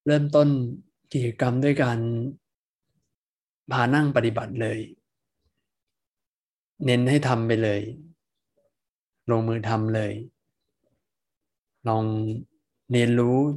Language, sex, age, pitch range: Thai, male, 20-39, 110-130 Hz